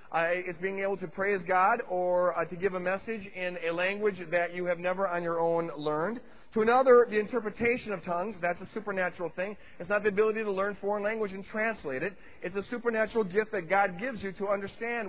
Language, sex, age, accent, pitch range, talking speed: English, male, 40-59, American, 180-225 Hz, 220 wpm